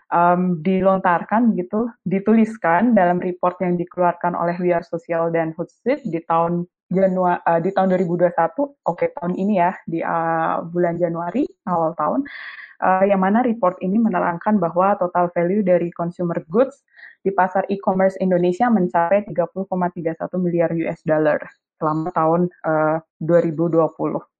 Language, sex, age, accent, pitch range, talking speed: Indonesian, female, 20-39, native, 175-200 Hz, 140 wpm